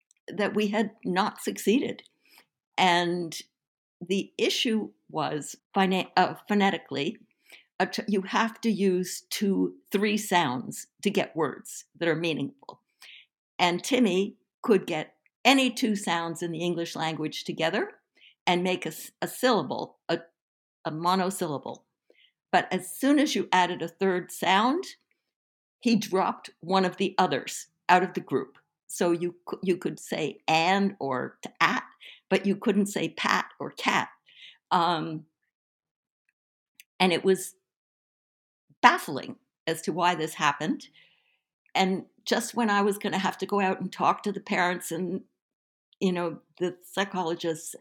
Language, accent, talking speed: English, American, 135 wpm